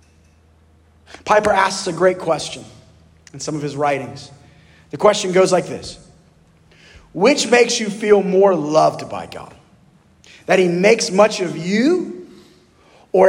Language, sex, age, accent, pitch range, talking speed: English, male, 30-49, American, 130-190 Hz, 135 wpm